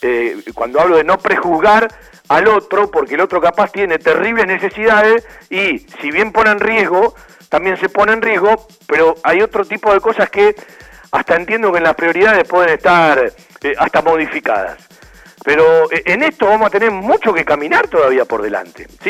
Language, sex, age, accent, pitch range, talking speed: Spanish, male, 50-69, Argentinian, 165-245 Hz, 180 wpm